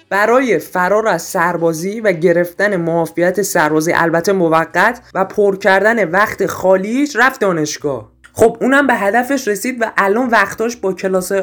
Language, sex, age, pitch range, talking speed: Persian, male, 20-39, 180-250 Hz, 140 wpm